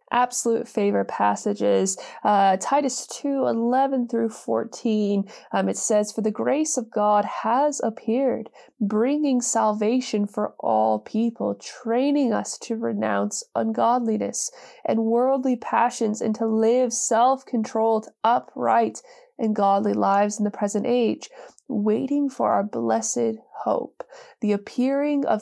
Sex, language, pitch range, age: female, English, 210-255 Hz, 20-39